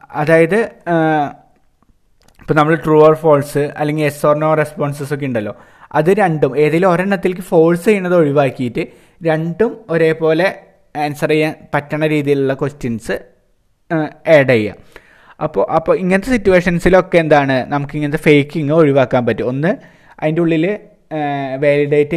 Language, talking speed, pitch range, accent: Malayalam, 110 wpm, 145-175 Hz, native